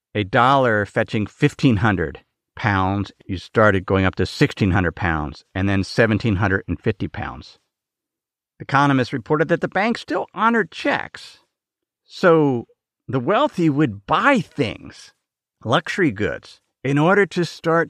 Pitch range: 105-165 Hz